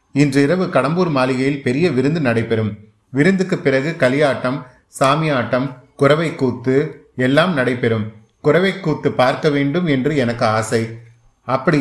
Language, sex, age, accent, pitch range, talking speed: Tamil, male, 30-49, native, 120-150 Hz, 115 wpm